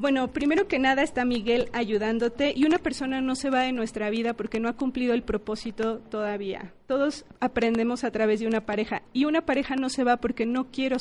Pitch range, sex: 220-265 Hz, female